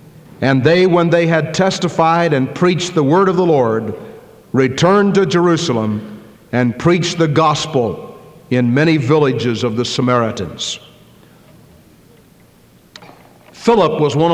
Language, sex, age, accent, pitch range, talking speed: English, male, 60-79, American, 140-170 Hz, 120 wpm